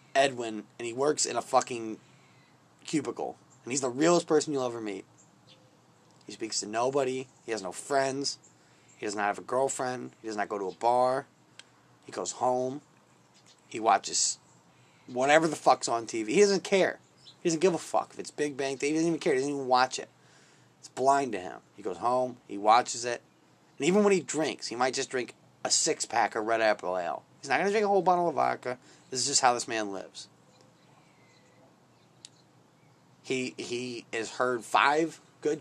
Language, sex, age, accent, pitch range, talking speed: English, male, 30-49, American, 115-150 Hz, 195 wpm